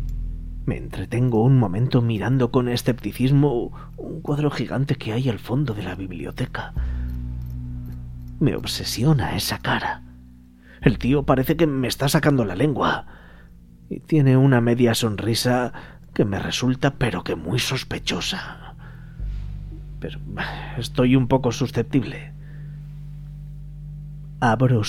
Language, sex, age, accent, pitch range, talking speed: Spanish, male, 30-49, Spanish, 90-135 Hz, 115 wpm